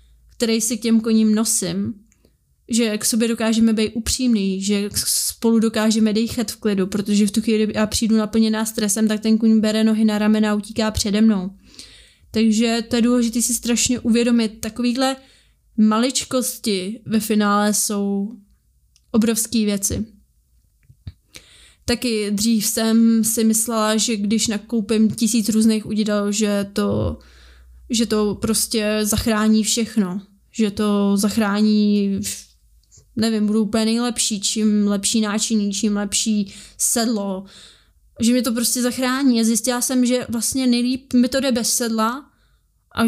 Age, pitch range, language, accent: 20-39, 210-235 Hz, Czech, native